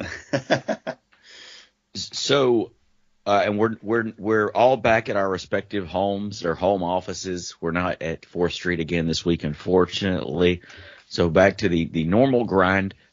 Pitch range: 80-100 Hz